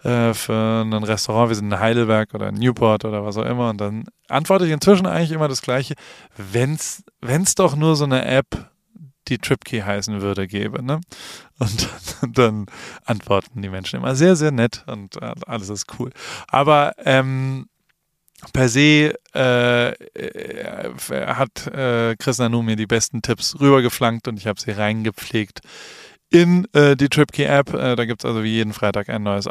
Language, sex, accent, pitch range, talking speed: German, male, German, 115-140 Hz, 170 wpm